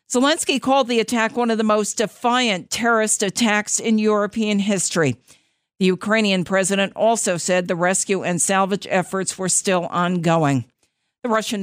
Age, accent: 50-69, American